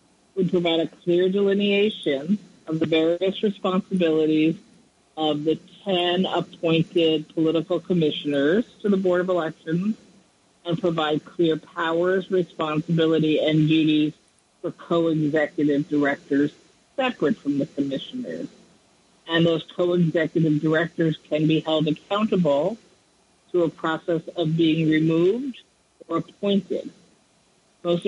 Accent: American